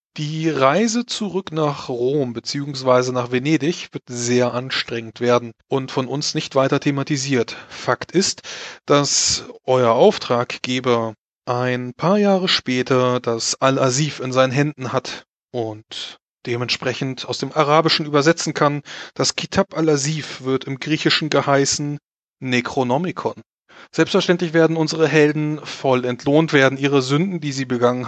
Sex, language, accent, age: male, German, German, 30-49